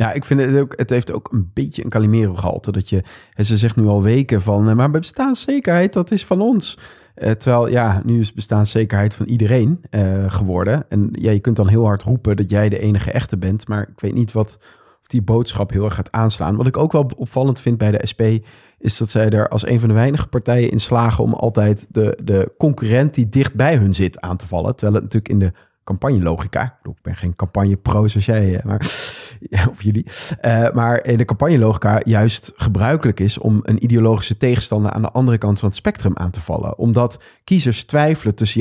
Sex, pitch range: male, 105-125 Hz